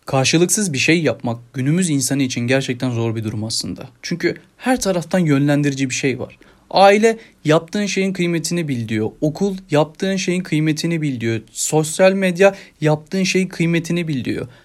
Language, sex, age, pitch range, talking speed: Turkish, male, 30-49, 140-190 Hz, 155 wpm